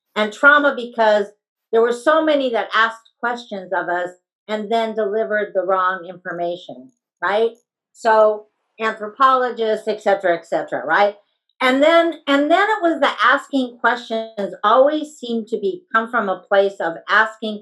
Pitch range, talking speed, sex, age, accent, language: 195-240 Hz, 155 wpm, female, 50-69, American, English